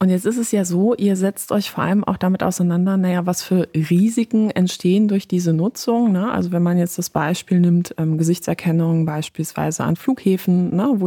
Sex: female